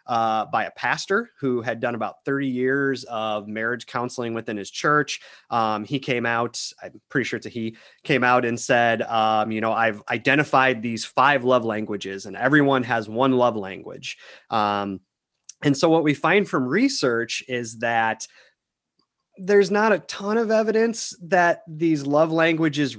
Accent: American